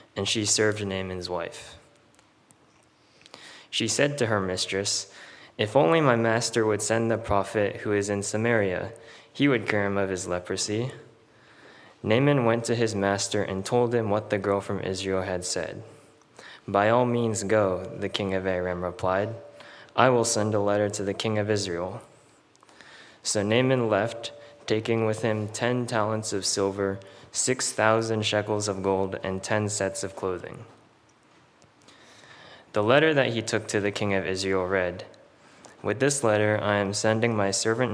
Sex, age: male, 20-39